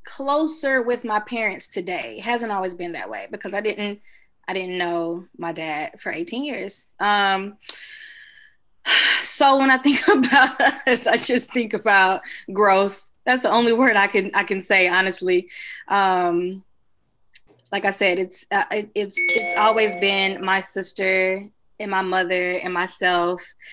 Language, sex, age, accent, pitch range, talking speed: English, female, 20-39, American, 190-230 Hz, 150 wpm